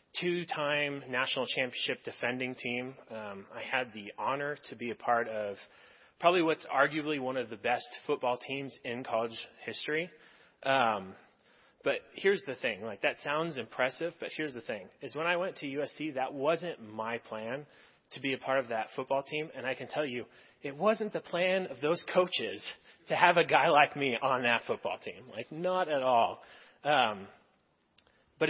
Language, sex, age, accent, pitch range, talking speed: English, male, 30-49, American, 125-165 Hz, 185 wpm